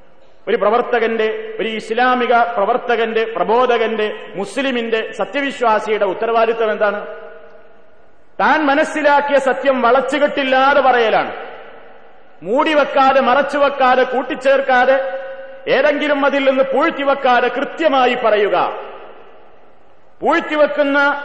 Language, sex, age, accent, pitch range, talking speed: Malayalam, male, 40-59, native, 220-260 Hz, 70 wpm